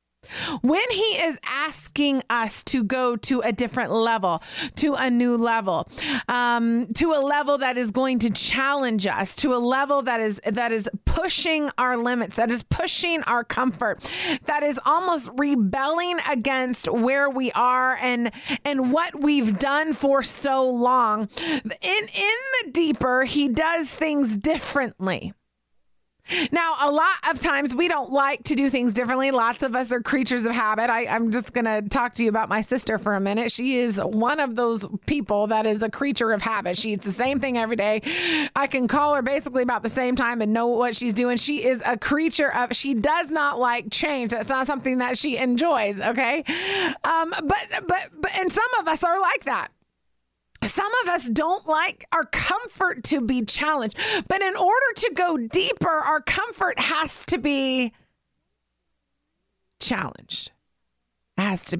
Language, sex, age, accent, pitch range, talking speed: English, female, 30-49, American, 225-295 Hz, 175 wpm